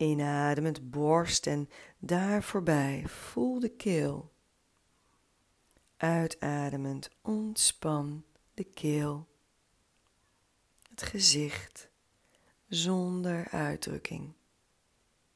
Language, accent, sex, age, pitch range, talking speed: Dutch, Dutch, female, 40-59, 140-180 Hz, 65 wpm